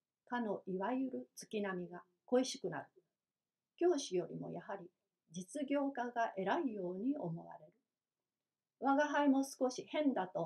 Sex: female